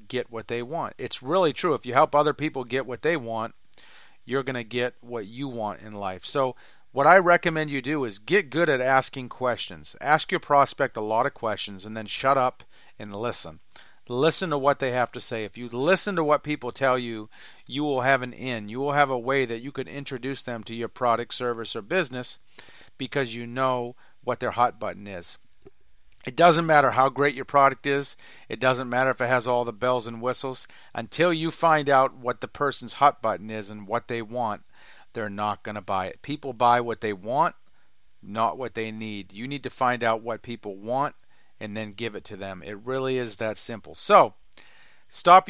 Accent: American